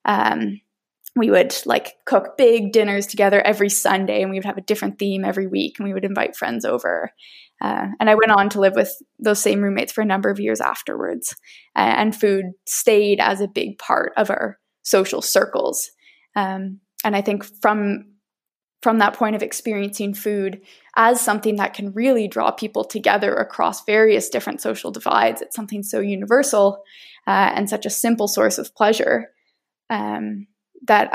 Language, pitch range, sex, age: English, 195-220 Hz, female, 10-29